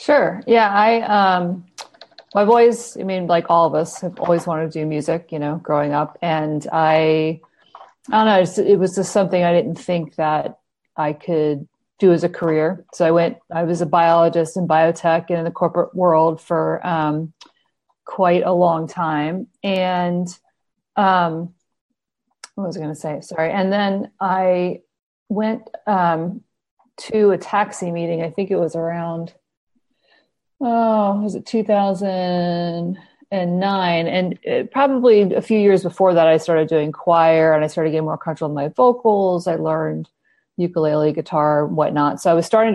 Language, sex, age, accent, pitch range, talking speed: English, female, 40-59, American, 160-190 Hz, 165 wpm